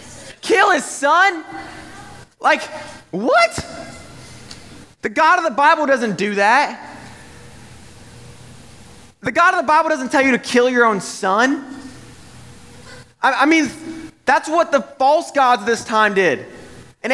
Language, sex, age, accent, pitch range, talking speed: English, male, 20-39, American, 180-290 Hz, 135 wpm